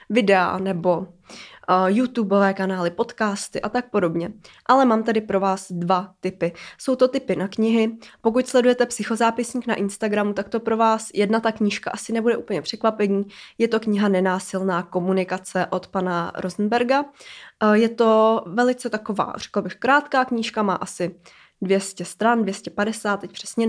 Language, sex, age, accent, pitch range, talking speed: Czech, female, 20-39, native, 195-225 Hz, 155 wpm